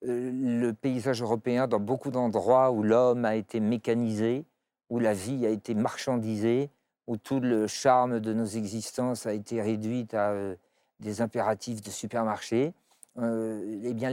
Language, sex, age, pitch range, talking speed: French, male, 50-69, 110-130 Hz, 150 wpm